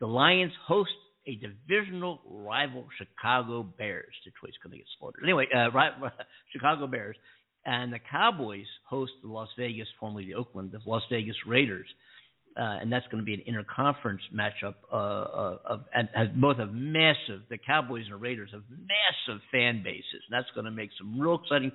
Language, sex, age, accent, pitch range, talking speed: English, male, 50-69, American, 110-145 Hz, 180 wpm